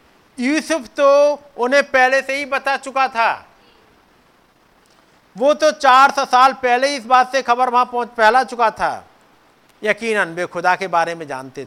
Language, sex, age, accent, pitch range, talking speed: Hindi, male, 50-69, native, 210-255 Hz, 150 wpm